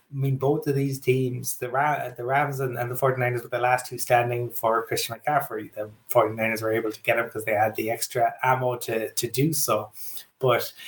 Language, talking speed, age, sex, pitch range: English, 205 wpm, 20-39, male, 110-130 Hz